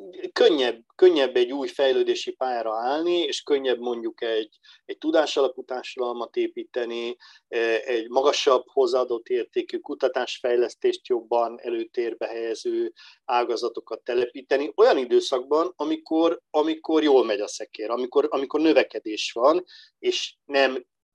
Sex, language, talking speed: male, Hungarian, 110 wpm